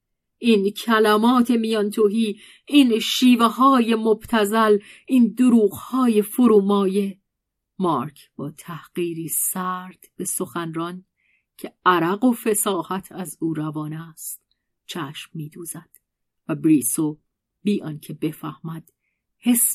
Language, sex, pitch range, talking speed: Persian, female, 165-220 Hz, 105 wpm